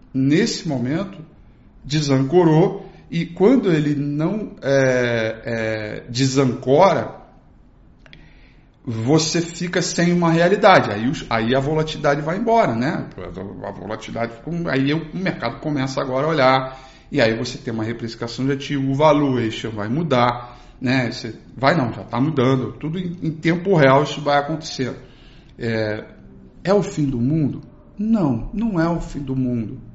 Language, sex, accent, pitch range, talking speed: Portuguese, male, Brazilian, 120-160 Hz, 145 wpm